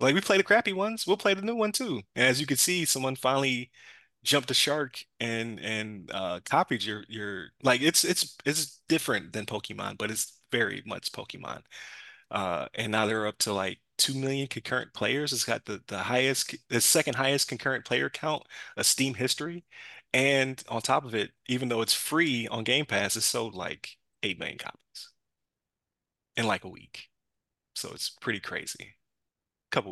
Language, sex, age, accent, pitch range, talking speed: English, male, 20-39, American, 115-145 Hz, 185 wpm